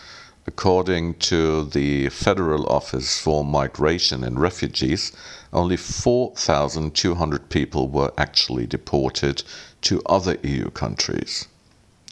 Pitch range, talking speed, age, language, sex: 75-95 Hz, 95 wpm, 50-69, English, male